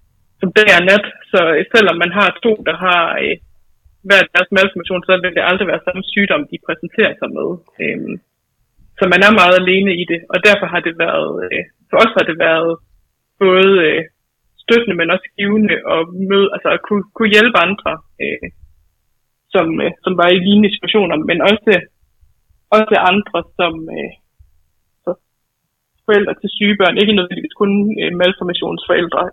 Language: Danish